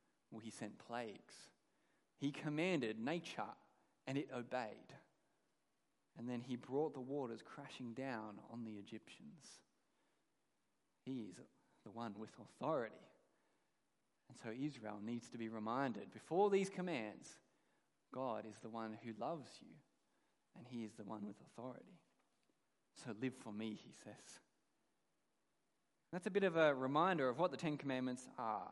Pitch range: 115-150 Hz